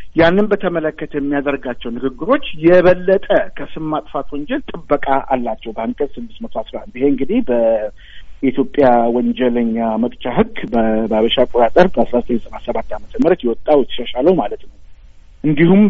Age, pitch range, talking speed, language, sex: 50-69, 125-180 Hz, 100 wpm, Amharic, male